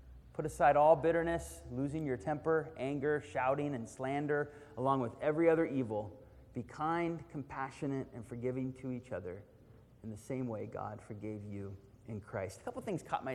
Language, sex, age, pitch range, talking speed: English, male, 30-49, 115-160 Hz, 170 wpm